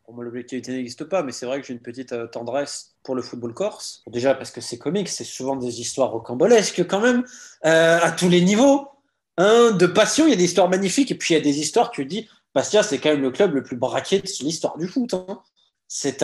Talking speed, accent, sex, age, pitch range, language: 250 wpm, French, male, 20-39, 145-210 Hz, French